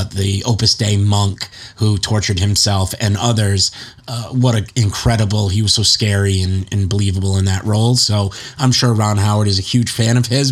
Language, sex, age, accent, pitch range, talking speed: English, male, 30-49, American, 105-125 Hz, 195 wpm